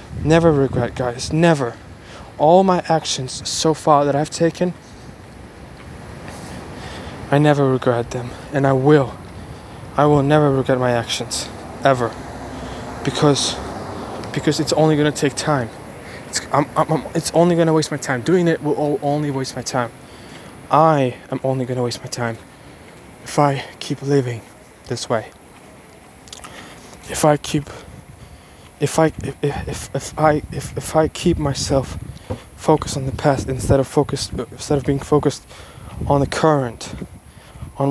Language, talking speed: English, 150 wpm